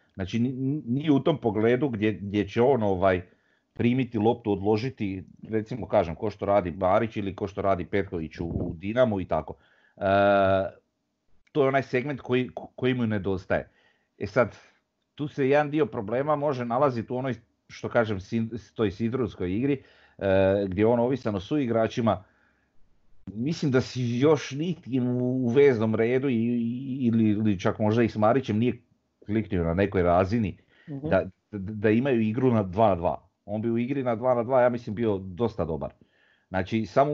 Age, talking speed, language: 40-59, 170 wpm, Croatian